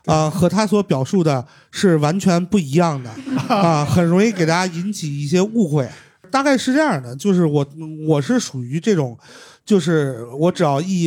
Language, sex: Chinese, male